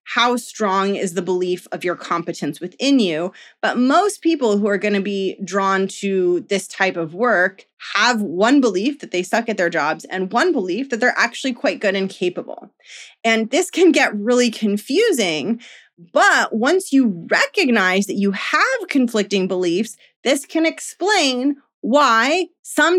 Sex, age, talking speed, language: female, 30-49, 165 wpm, English